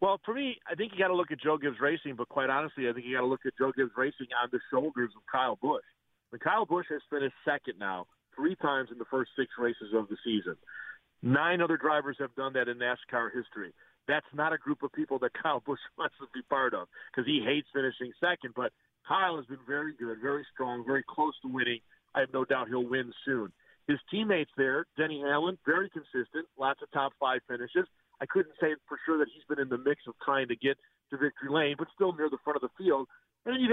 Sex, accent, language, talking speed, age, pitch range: male, American, English, 245 wpm, 50-69, 125-155 Hz